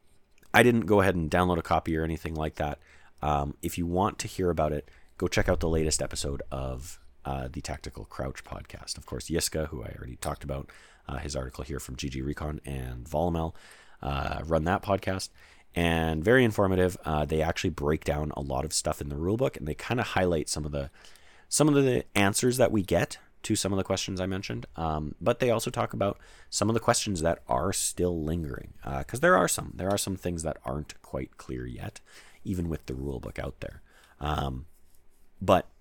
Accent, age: American, 30-49